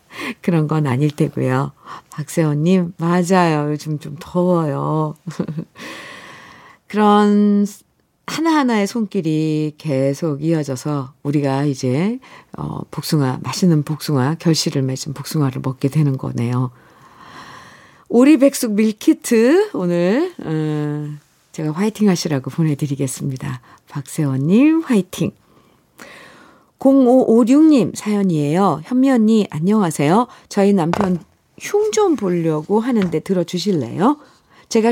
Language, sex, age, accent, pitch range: Korean, female, 50-69, native, 150-220 Hz